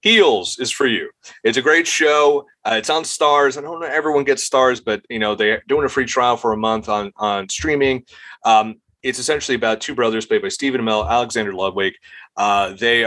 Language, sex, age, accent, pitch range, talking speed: English, male, 30-49, American, 105-135 Hz, 210 wpm